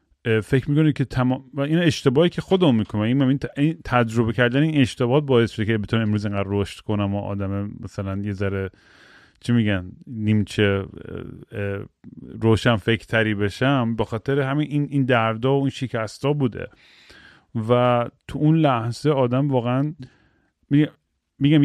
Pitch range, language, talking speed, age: 110-140 Hz, Persian, 140 wpm, 40-59